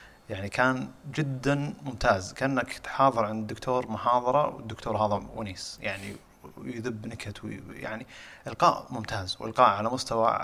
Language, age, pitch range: Arabic, 30-49, 110-130 Hz